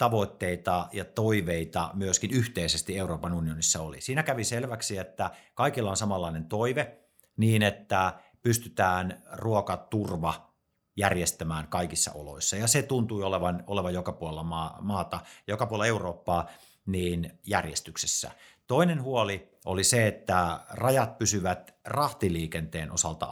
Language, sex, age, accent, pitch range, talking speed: Finnish, male, 50-69, native, 90-115 Hz, 115 wpm